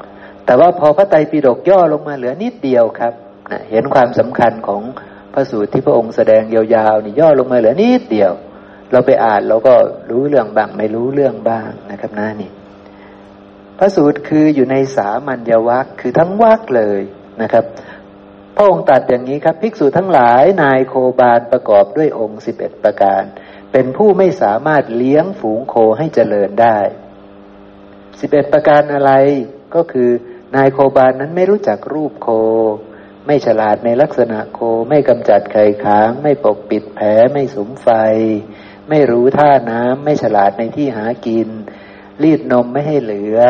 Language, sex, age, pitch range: Thai, male, 60-79, 105-140 Hz